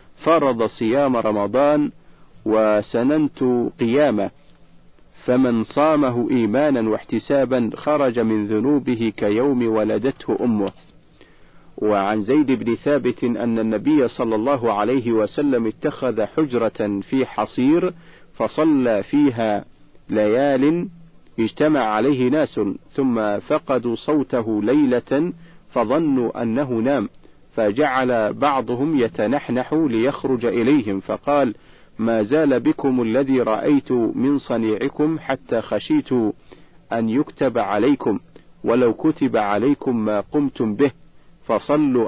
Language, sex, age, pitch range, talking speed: Arabic, male, 50-69, 110-145 Hz, 95 wpm